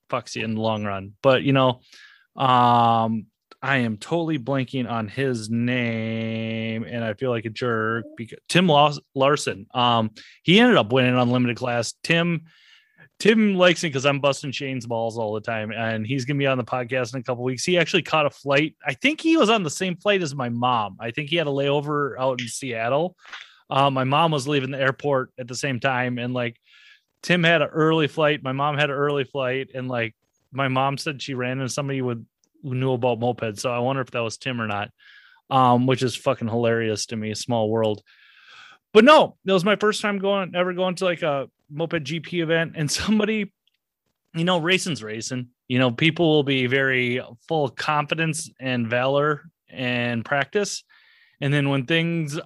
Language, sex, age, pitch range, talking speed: English, male, 20-39, 120-160 Hz, 205 wpm